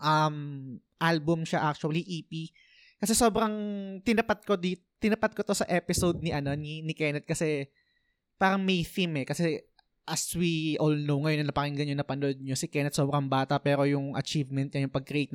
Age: 20-39